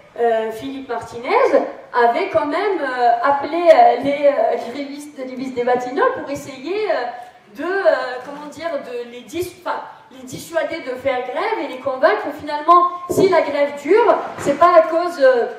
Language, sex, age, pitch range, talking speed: French, female, 30-49, 255-340 Hz, 165 wpm